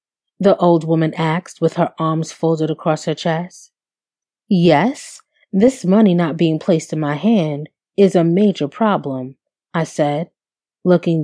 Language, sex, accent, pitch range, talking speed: English, female, American, 155-190 Hz, 145 wpm